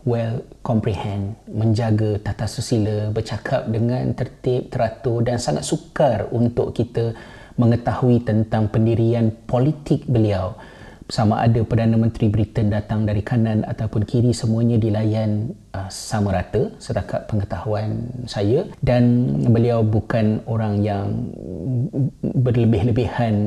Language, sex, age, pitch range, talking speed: Malay, male, 30-49, 110-125 Hz, 110 wpm